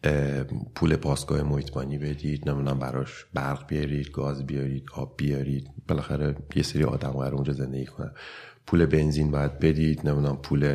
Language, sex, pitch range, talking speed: English, male, 70-100 Hz, 140 wpm